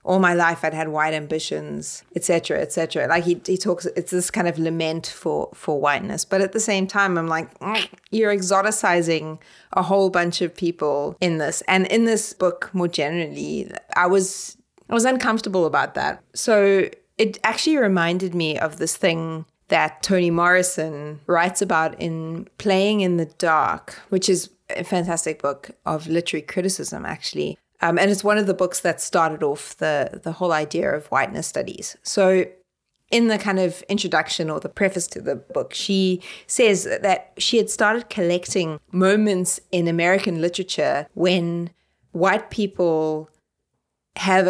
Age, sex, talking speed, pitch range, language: 30-49, female, 165 wpm, 165-195 Hz, English